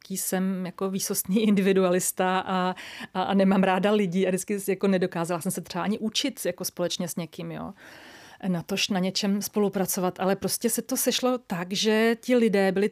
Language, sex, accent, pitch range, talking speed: Czech, female, native, 180-200 Hz, 180 wpm